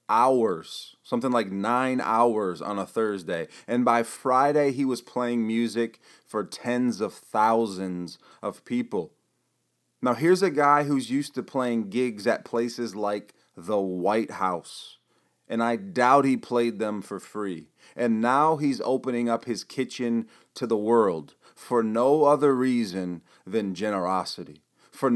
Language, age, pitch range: English, 30-49, 110-130 Hz